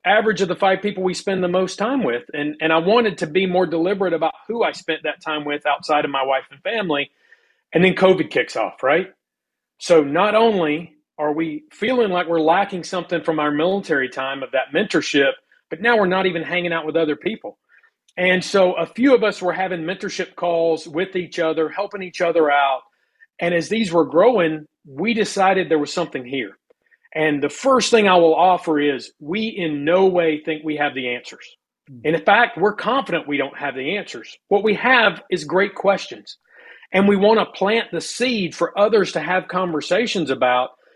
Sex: male